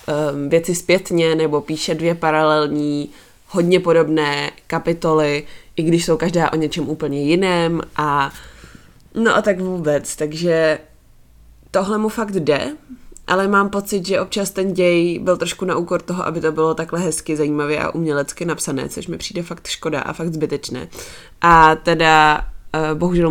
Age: 20-39